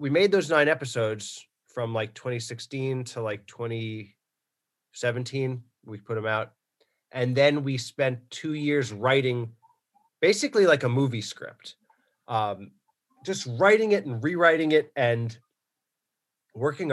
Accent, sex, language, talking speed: American, male, English, 130 wpm